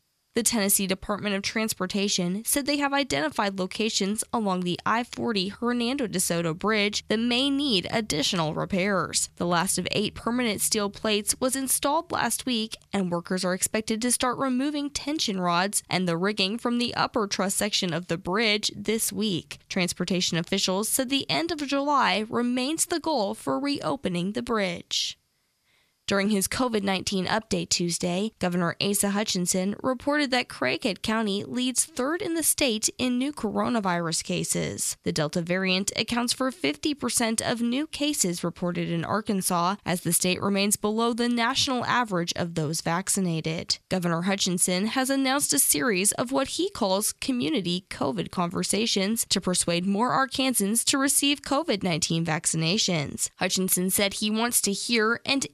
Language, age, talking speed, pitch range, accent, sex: English, 10-29, 150 wpm, 185-250 Hz, American, female